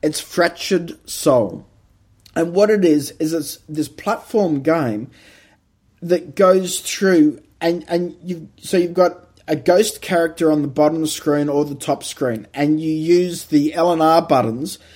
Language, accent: English, Australian